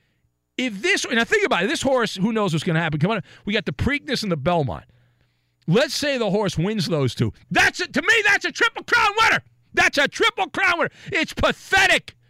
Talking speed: 225 wpm